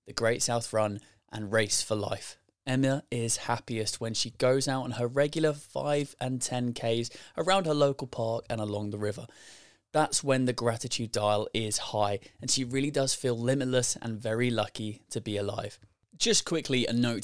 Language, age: English, 20-39